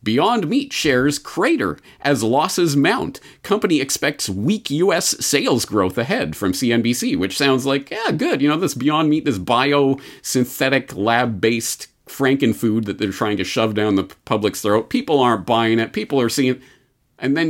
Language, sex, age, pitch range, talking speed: English, male, 40-59, 105-140 Hz, 170 wpm